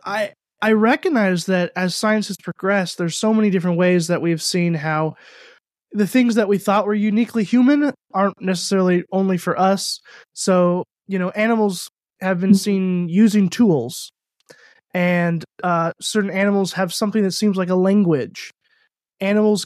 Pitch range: 175-220 Hz